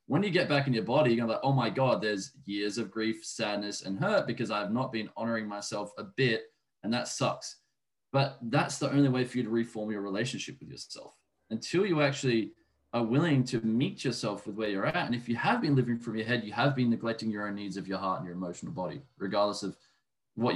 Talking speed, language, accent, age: 240 wpm, English, Australian, 20-39